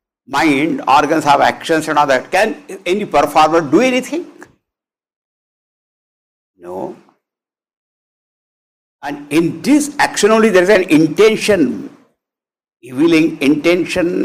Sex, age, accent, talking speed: male, 60-79, Indian, 105 wpm